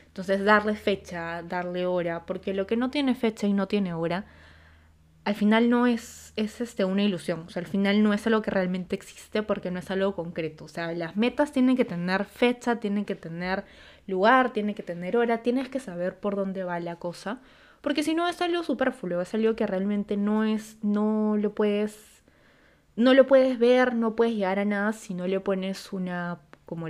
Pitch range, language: 180-220 Hz, Spanish